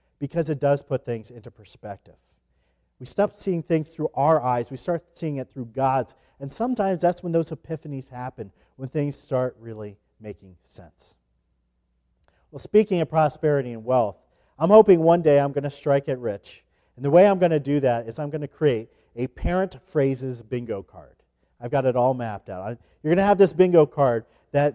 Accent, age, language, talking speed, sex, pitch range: American, 40-59, English, 185 wpm, male, 115-175 Hz